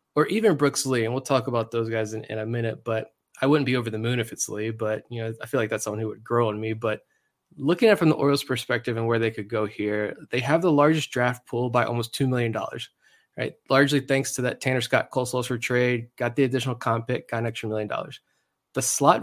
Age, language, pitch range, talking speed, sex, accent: 20-39, English, 120-145 Hz, 260 wpm, male, American